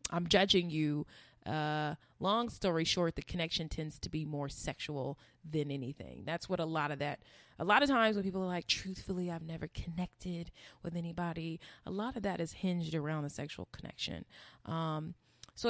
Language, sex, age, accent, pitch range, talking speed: English, female, 20-39, American, 155-195 Hz, 185 wpm